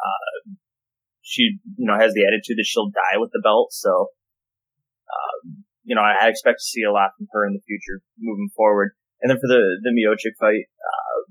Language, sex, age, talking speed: English, male, 20-39, 195 wpm